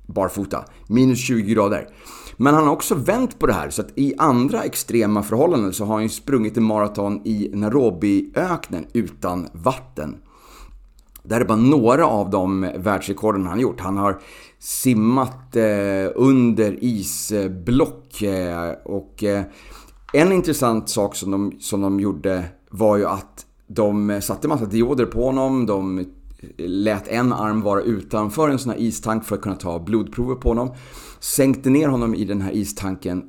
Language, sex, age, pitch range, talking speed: Swedish, male, 30-49, 100-120 Hz, 155 wpm